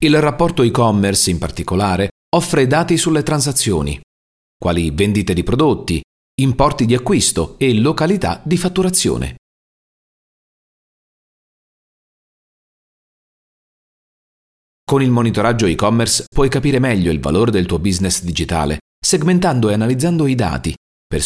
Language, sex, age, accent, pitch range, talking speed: Italian, male, 40-59, native, 85-140 Hz, 110 wpm